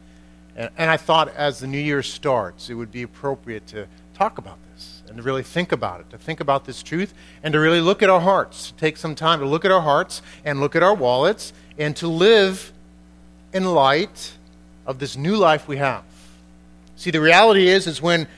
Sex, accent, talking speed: male, American, 210 wpm